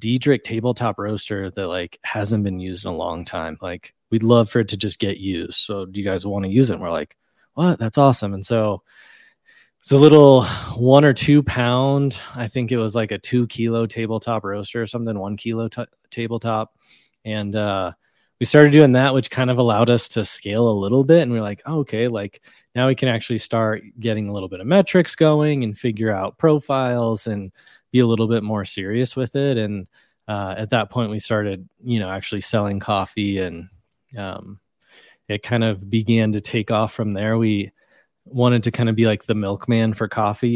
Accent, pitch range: American, 105-125 Hz